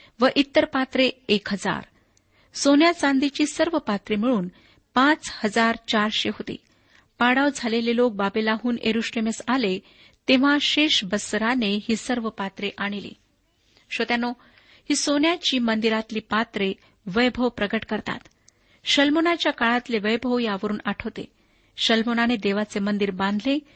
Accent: native